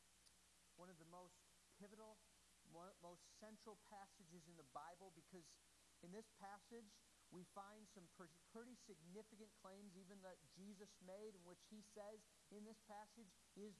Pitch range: 145-200 Hz